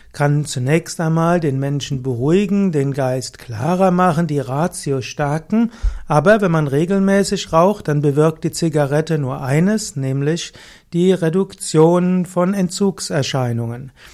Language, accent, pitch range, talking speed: German, German, 140-180 Hz, 125 wpm